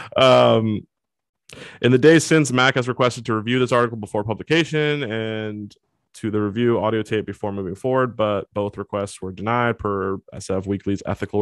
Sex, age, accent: male, 20-39, American